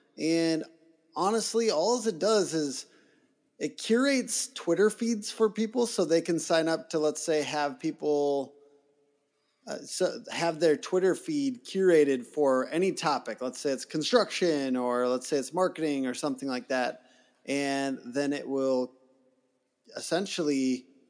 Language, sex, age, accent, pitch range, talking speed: English, male, 30-49, American, 145-210 Hz, 140 wpm